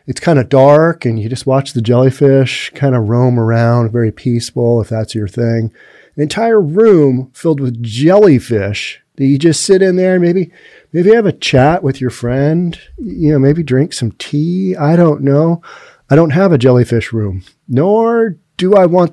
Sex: male